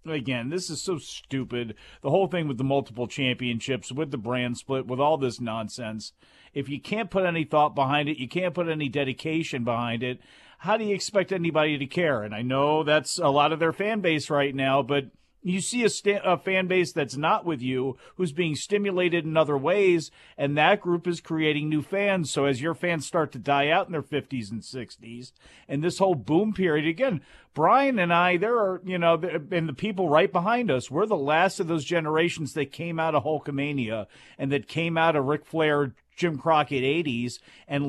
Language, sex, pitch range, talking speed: English, male, 140-180 Hz, 210 wpm